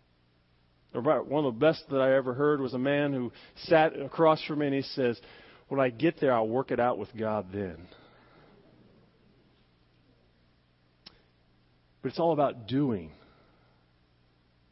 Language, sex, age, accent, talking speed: English, male, 40-59, American, 145 wpm